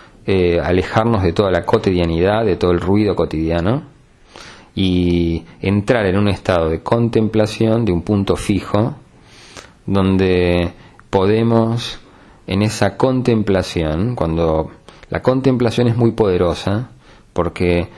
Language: Spanish